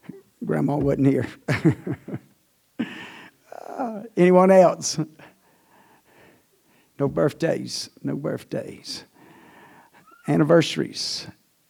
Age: 60-79